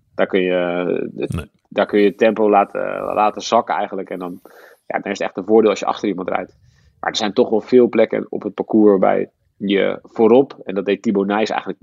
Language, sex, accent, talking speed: Dutch, male, Dutch, 220 wpm